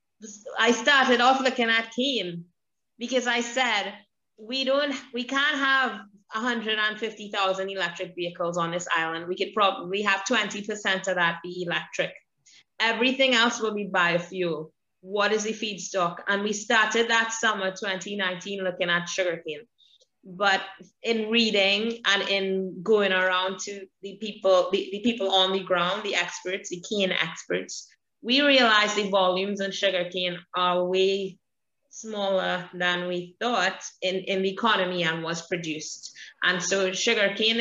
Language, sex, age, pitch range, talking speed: English, female, 20-39, 180-220 Hz, 145 wpm